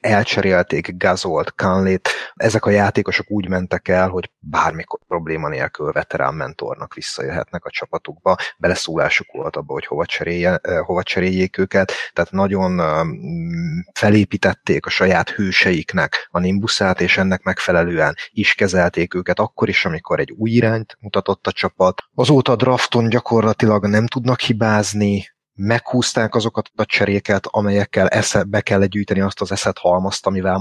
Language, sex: Hungarian, male